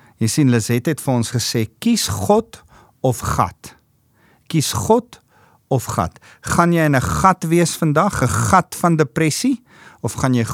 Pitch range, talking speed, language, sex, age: 115-165 Hz, 165 wpm, English, male, 50-69